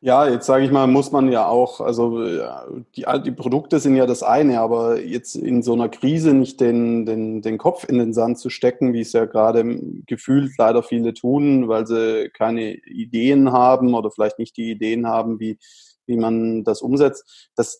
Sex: male